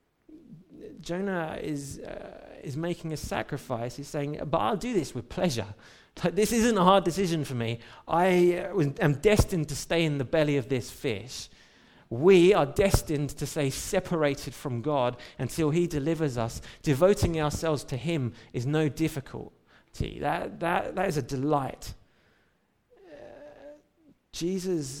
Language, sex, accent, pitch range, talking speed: English, male, British, 120-165 Hz, 145 wpm